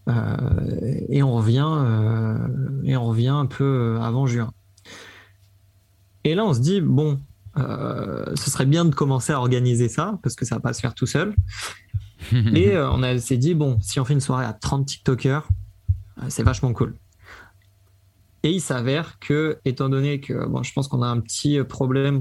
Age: 20-39